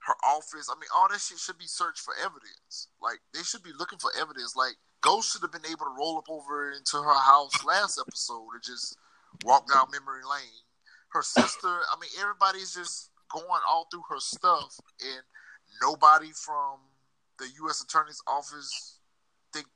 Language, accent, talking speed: English, American, 180 wpm